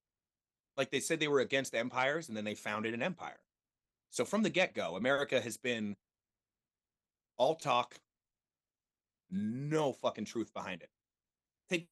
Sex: male